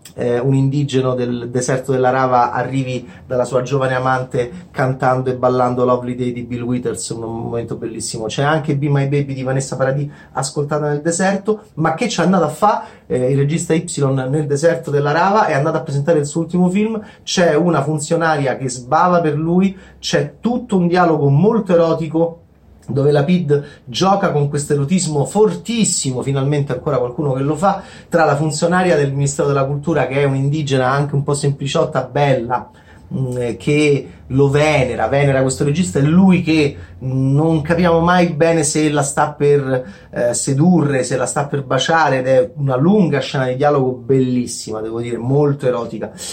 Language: Italian